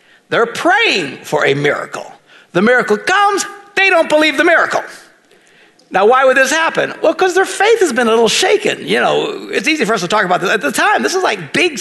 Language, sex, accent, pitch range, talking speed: English, male, American, 235-380 Hz, 225 wpm